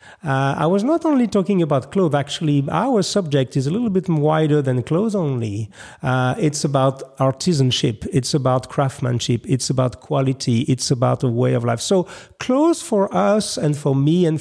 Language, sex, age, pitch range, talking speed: English, male, 40-59, 130-170 Hz, 180 wpm